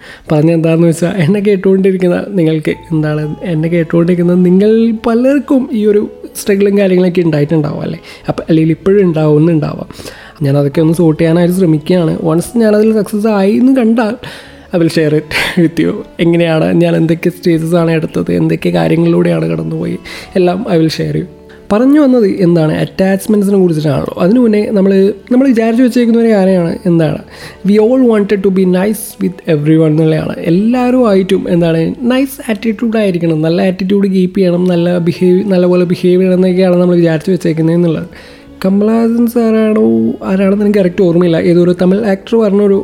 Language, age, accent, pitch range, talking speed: Malayalam, 20-39, native, 160-205 Hz, 140 wpm